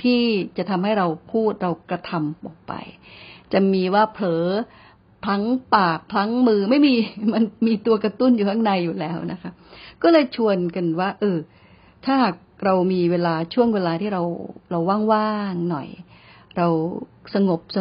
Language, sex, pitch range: Thai, female, 175-220 Hz